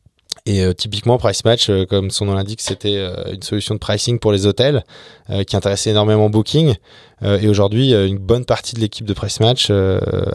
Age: 20-39